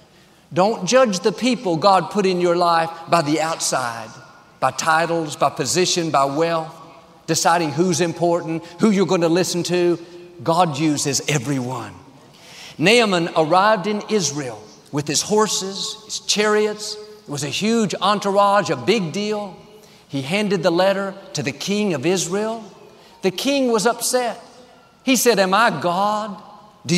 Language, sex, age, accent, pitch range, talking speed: English, male, 50-69, American, 165-210 Hz, 145 wpm